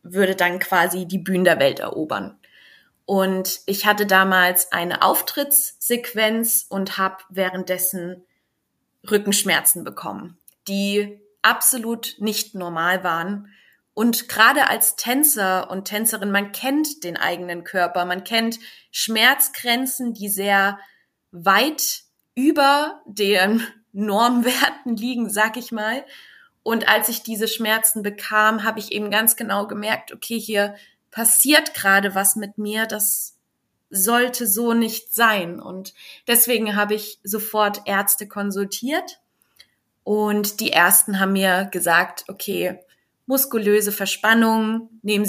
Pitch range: 190-230 Hz